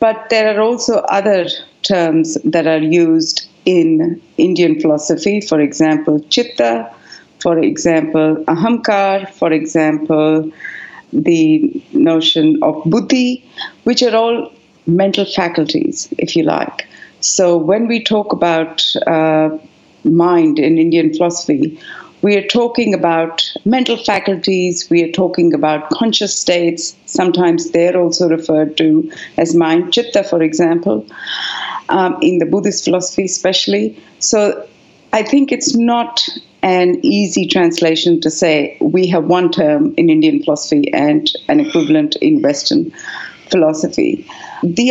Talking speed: 125 wpm